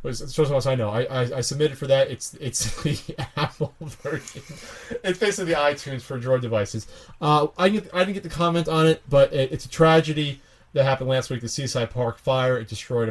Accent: American